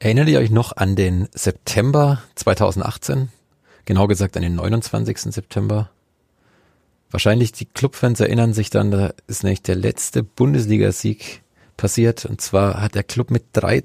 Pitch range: 95-120 Hz